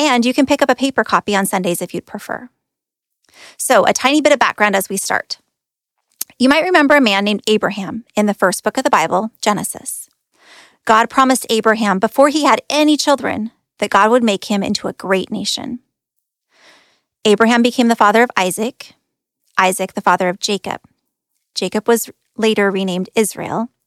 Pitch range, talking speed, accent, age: 200-245 Hz, 175 wpm, American, 20-39